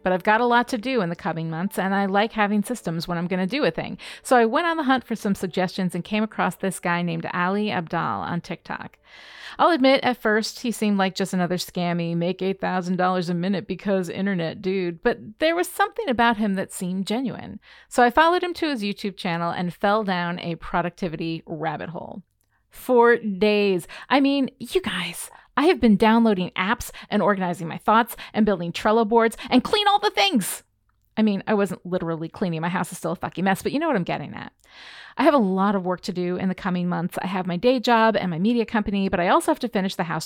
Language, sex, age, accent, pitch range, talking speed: English, female, 30-49, American, 180-230 Hz, 230 wpm